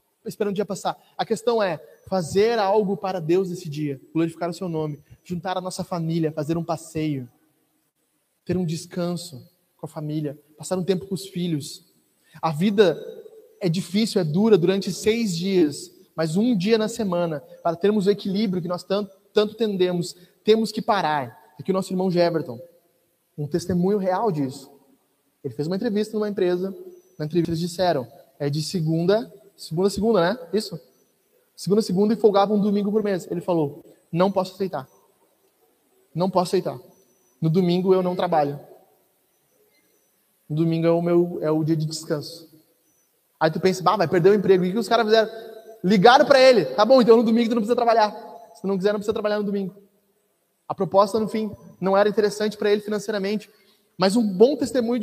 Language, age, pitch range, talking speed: Portuguese, 20-39, 170-210 Hz, 180 wpm